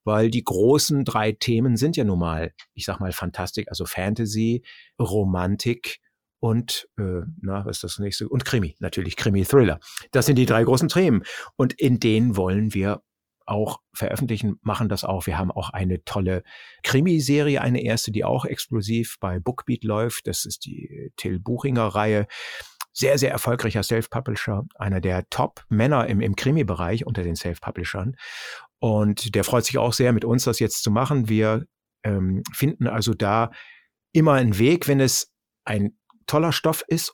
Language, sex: German, male